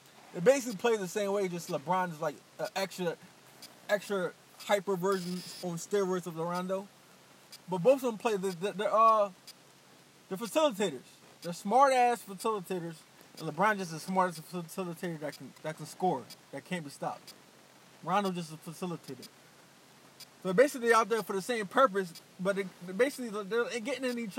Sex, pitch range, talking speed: male, 180-225 Hz, 180 wpm